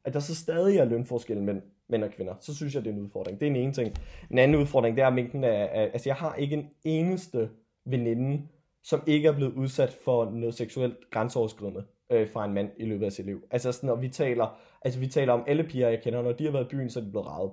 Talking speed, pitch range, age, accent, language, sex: 265 wpm, 120-150 Hz, 20-39, native, Danish, male